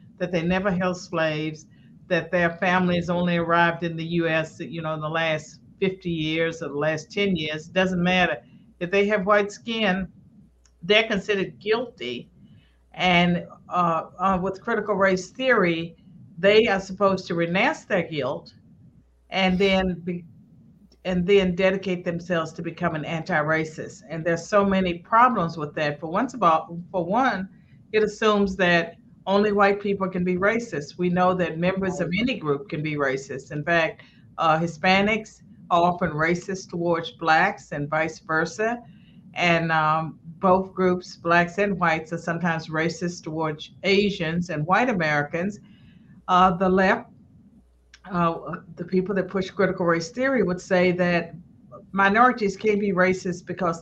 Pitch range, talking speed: 165-195 Hz, 155 wpm